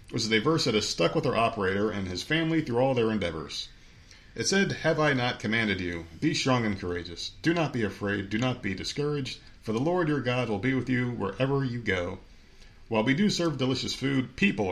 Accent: American